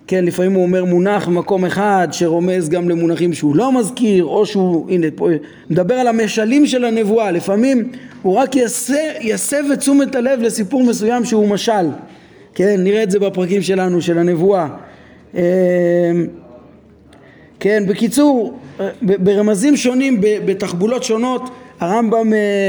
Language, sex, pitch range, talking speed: Hebrew, male, 180-230 Hz, 125 wpm